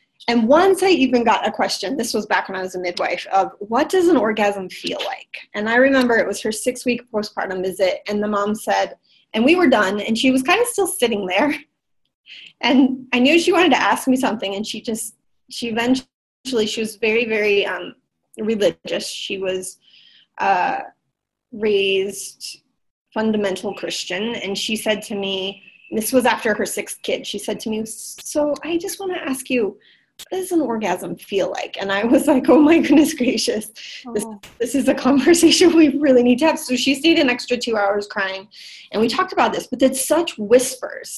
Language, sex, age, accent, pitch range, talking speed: English, female, 20-39, American, 205-275 Hz, 200 wpm